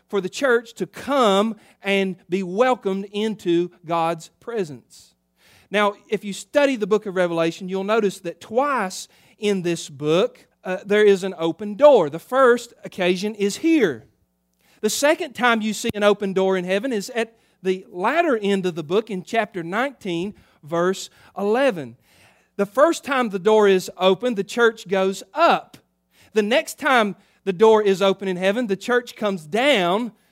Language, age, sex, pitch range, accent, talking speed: English, 40-59, male, 180-235 Hz, American, 165 wpm